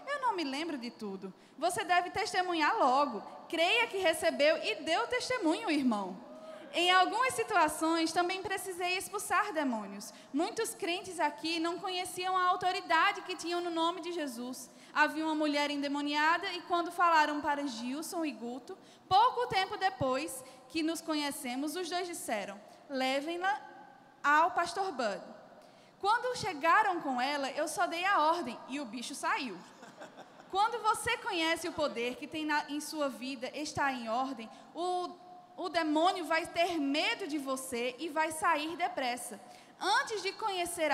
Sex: female